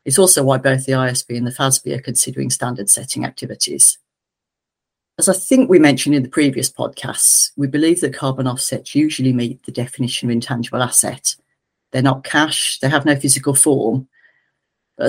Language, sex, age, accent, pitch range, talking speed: English, female, 40-59, British, 130-145 Hz, 175 wpm